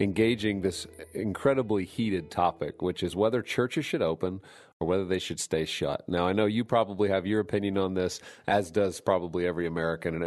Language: English